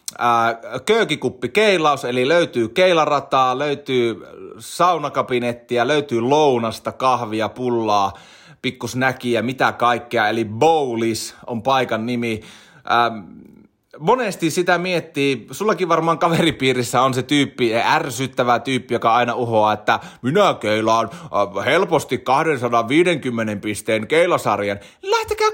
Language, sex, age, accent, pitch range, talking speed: Finnish, male, 30-49, native, 120-175 Hz, 95 wpm